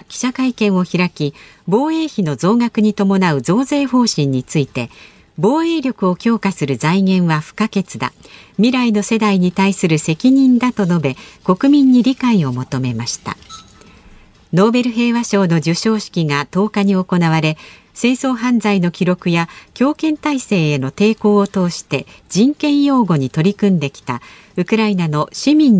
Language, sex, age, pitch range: Japanese, female, 50-69, 155-230 Hz